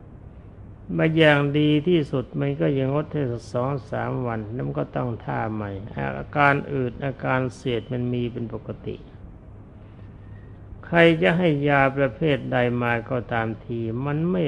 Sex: male